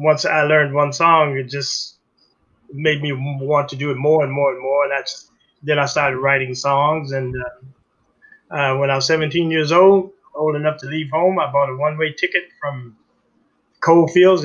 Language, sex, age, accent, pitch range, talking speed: English, male, 30-49, American, 140-160 Hz, 195 wpm